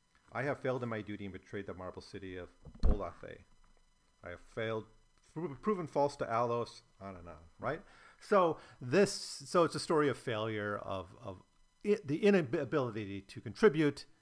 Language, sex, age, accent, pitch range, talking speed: English, male, 40-59, American, 100-145 Hz, 170 wpm